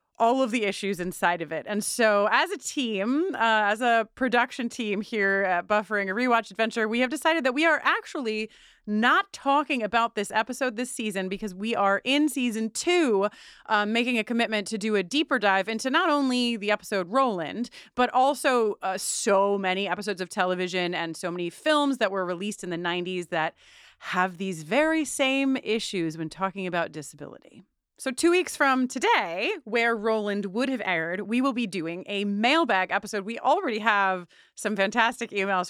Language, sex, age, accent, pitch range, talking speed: English, female, 30-49, American, 195-260 Hz, 185 wpm